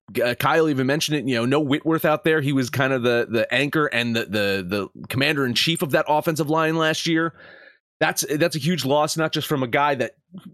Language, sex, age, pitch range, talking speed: English, male, 30-49, 135-175 Hz, 240 wpm